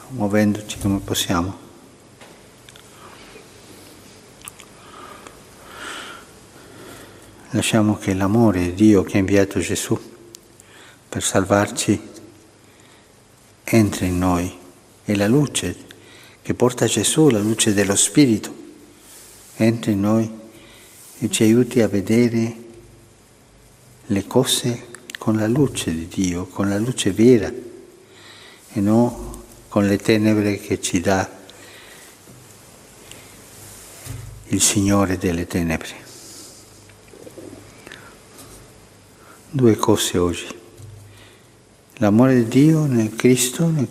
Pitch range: 100-120 Hz